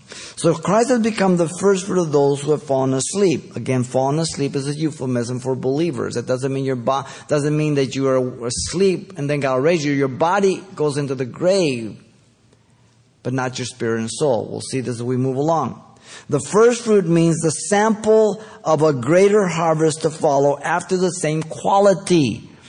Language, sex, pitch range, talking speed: English, male, 130-175 Hz, 190 wpm